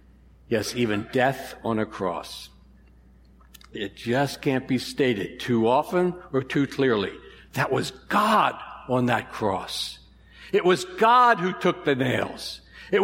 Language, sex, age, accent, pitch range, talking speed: English, male, 60-79, American, 125-185 Hz, 140 wpm